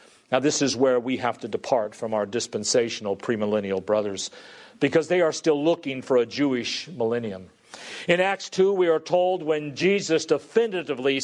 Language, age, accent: English, 50-69, American